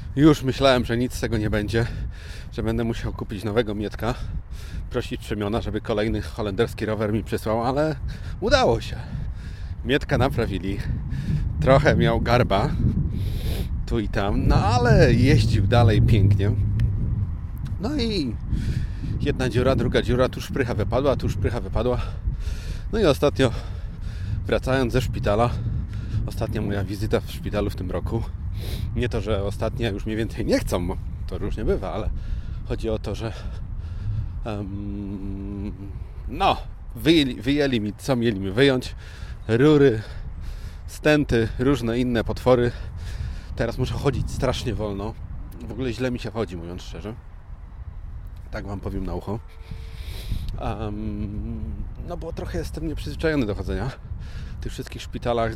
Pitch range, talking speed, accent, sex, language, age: 95-120 Hz, 135 wpm, native, male, Polish, 30-49